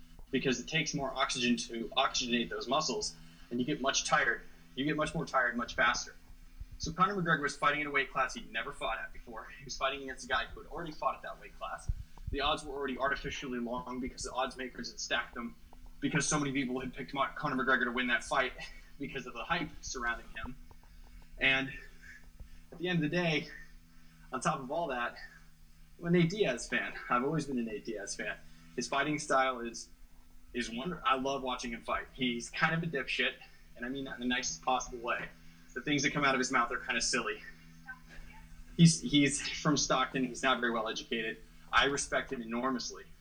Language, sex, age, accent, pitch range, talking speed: English, male, 20-39, American, 85-135 Hz, 215 wpm